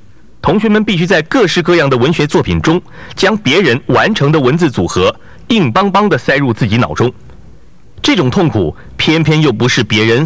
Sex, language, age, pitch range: male, Chinese, 50-69, 115-180 Hz